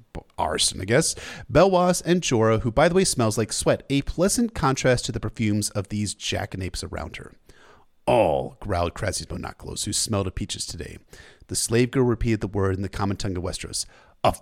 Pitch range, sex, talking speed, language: 100-135 Hz, male, 185 wpm, English